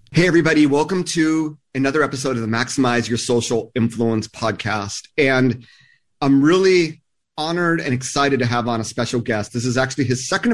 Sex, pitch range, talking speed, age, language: male, 120-155 Hz, 170 wpm, 30-49, English